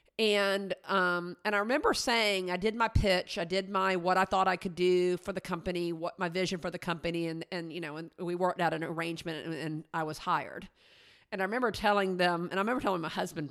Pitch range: 175-205 Hz